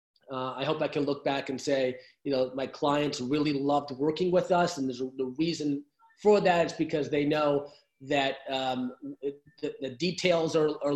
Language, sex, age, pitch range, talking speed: English, male, 30-49, 130-160 Hz, 205 wpm